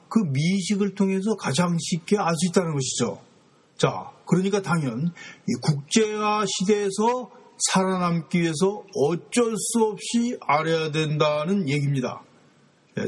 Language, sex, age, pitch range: Korean, male, 40-59, 140-190 Hz